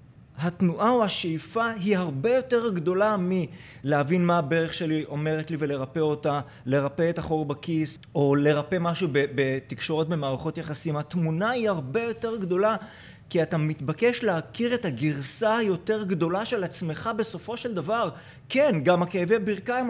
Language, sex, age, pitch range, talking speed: Hebrew, male, 30-49, 155-225 Hz, 145 wpm